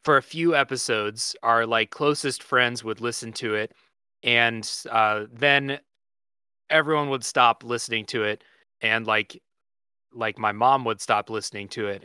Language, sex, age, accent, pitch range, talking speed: English, male, 20-39, American, 110-135 Hz, 155 wpm